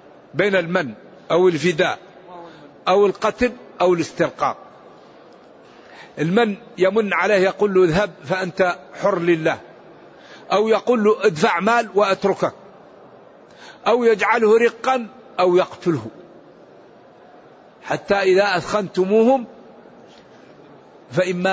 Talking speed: 90 wpm